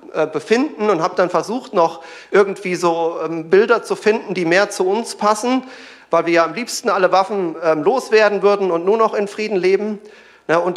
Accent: German